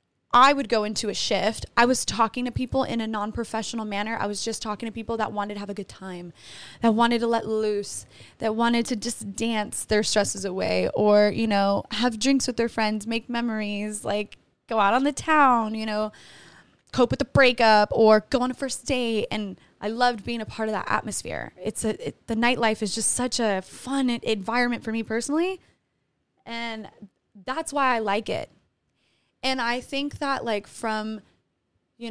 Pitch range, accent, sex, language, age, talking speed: 210-245 Hz, American, female, English, 20-39, 195 wpm